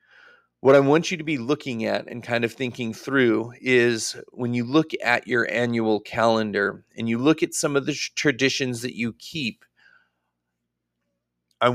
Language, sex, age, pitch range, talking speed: English, male, 40-59, 110-135 Hz, 170 wpm